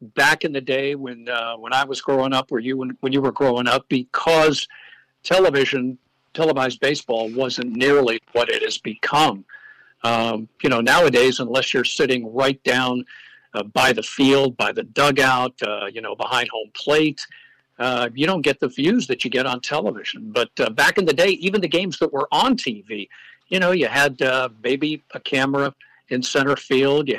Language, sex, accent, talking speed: English, male, American, 190 wpm